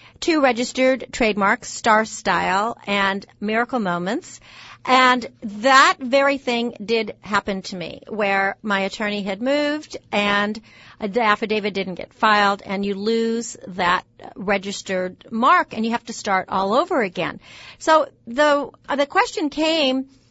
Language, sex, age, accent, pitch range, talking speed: English, female, 50-69, American, 200-260 Hz, 140 wpm